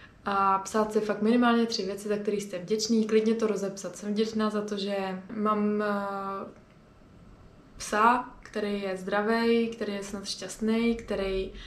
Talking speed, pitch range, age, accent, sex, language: 150 wpm, 200-220 Hz, 20-39, native, female, Czech